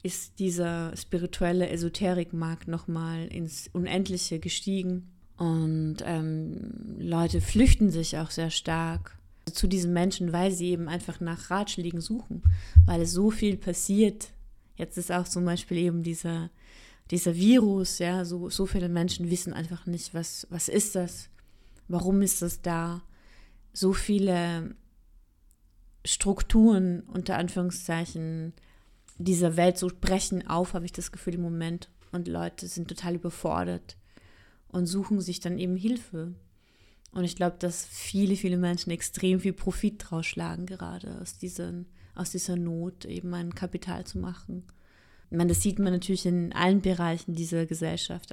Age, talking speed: 30-49, 145 wpm